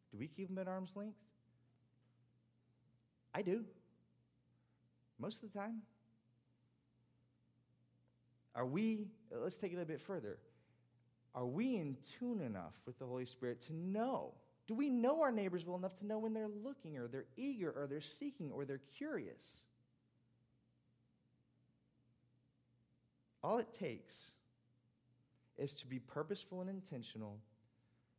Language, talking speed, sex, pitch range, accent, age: English, 135 wpm, male, 120-165 Hz, American, 30-49